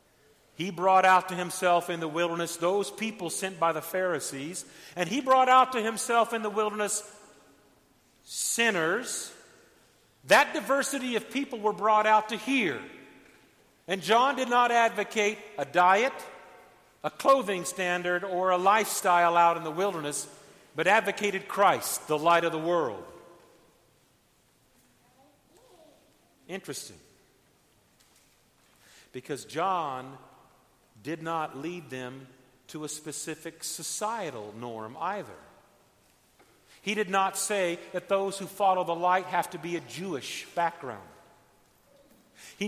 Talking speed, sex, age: 125 wpm, male, 50-69